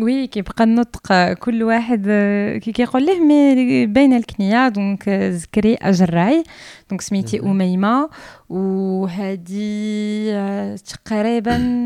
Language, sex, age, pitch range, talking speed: Arabic, female, 20-39, 195-235 Hz, 95 wpm